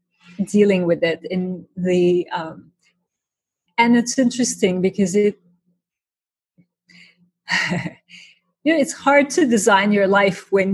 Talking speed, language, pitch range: 110 wpm, English, 180-215 Hz